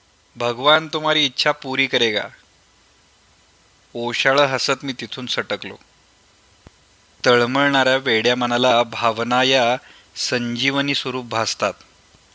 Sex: male